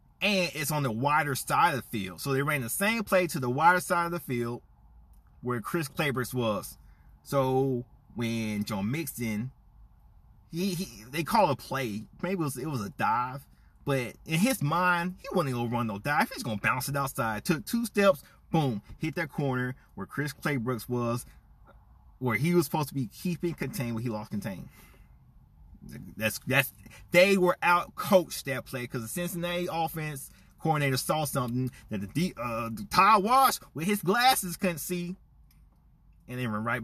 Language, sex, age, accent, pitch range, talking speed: English, male, 30-49, American, 120-180 Hz, 180 wpm